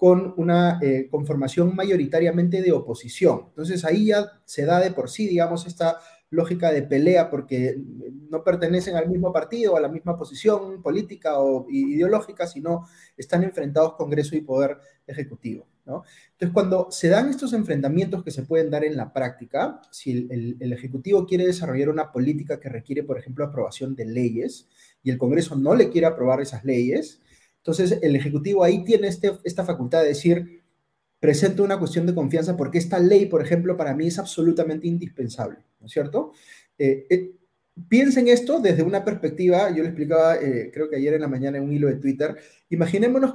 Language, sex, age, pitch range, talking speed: Spanish, male, 30-49, 145-190 Hz, 180 wpm